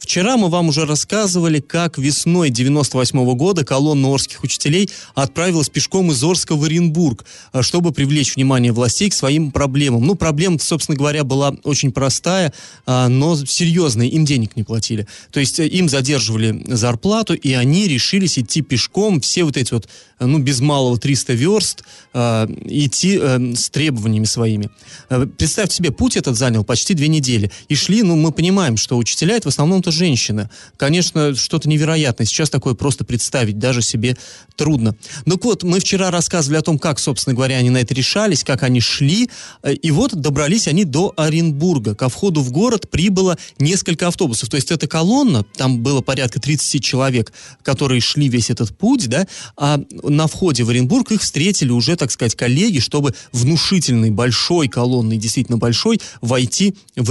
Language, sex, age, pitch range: Russian, male, 20-39, 125-170 Hz